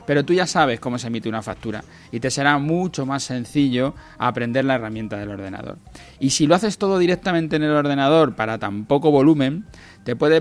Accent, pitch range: Spanish, 115-150 Hz